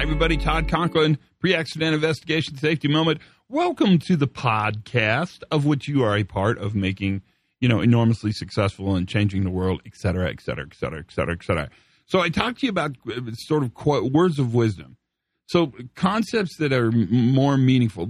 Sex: male